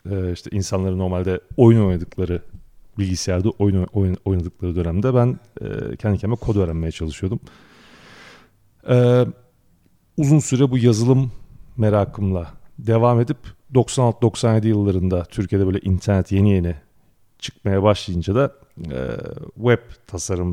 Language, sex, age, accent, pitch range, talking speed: Turkish, male, 40-59, native, 90-115 Hz, 100 wpm